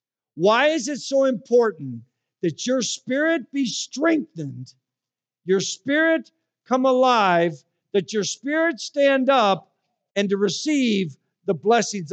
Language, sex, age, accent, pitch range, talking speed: English, male, 50-69, American, 175-260 Hz, 120 wpm